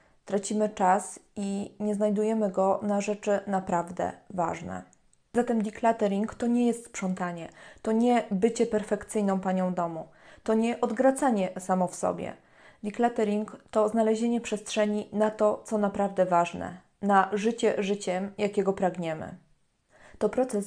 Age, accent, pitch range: 20-39, native, 190-215 Hz